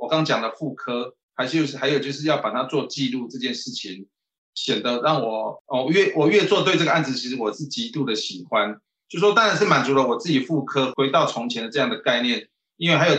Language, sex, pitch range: Chinese, male, 130-160 Hz